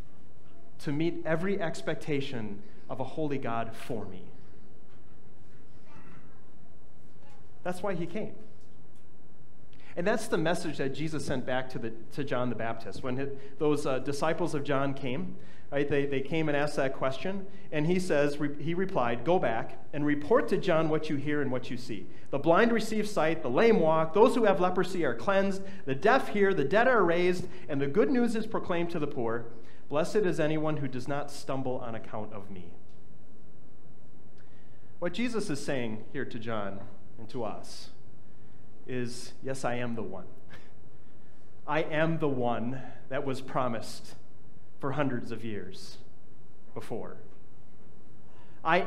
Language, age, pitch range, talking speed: English, 30-49, 130-175 Hz, 160 wpm